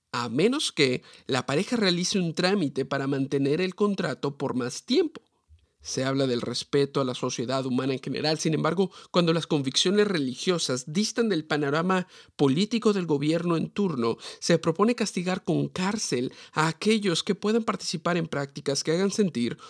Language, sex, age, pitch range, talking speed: Spanish, male, 50-69, 135-185 Hz, 165 wpm